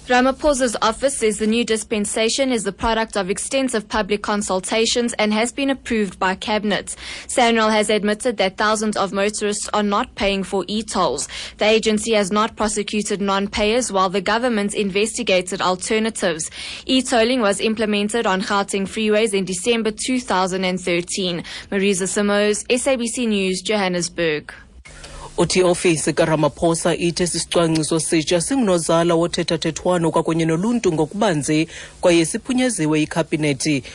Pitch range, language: 150-215 Hz, English